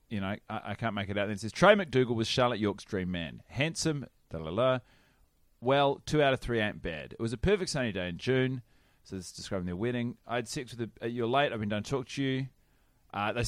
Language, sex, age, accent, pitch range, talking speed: English, male, 30-49, Australian, 100-130 Hz, 250 wpm